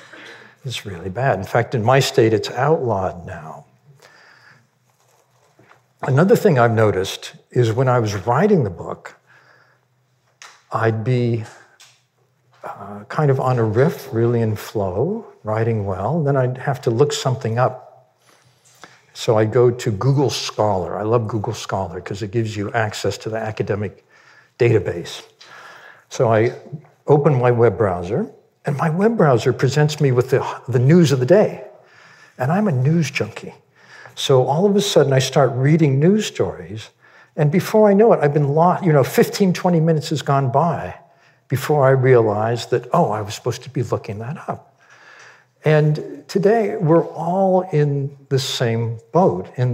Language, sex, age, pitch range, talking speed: English, male, 60-79, 120-160 Hz, 160 wpm